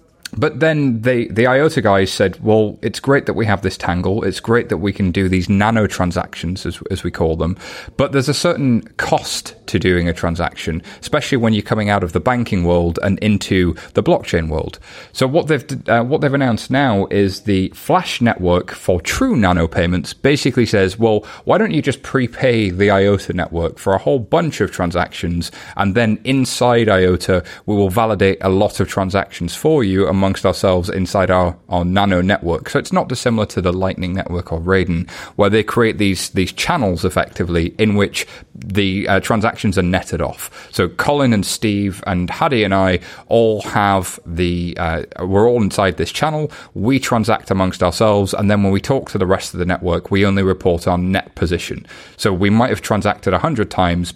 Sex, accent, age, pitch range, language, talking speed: male, British, 30-49, 90-115 Hz, English, 195 wpm